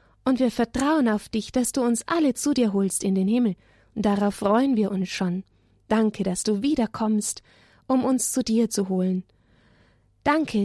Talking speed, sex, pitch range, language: 180 wpm, female, 185-230 Hz, German